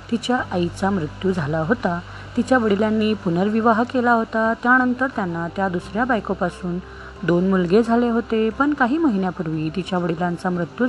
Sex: female